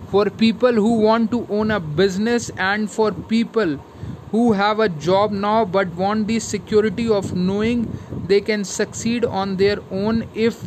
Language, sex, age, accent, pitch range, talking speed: Hindi, male, 20-39, native, 180-220 Hz, 165 wpm